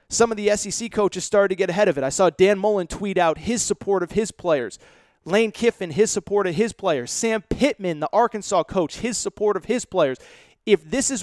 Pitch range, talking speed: 155-210 Hz, 225 wpm